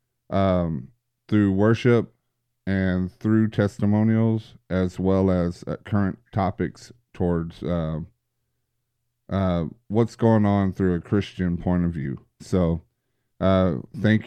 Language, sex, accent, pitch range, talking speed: English, male, American, 95-115 Hz, 115 wpm